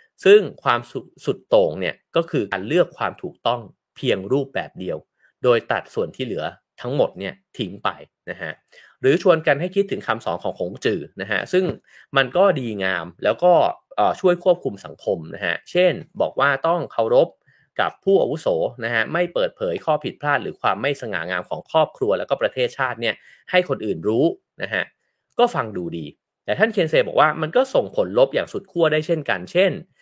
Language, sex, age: English, male, 30-49